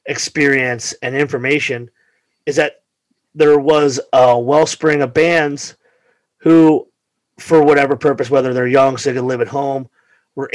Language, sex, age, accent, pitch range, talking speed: English, male, 30-49, American, 130-145 Hz, 140 wpm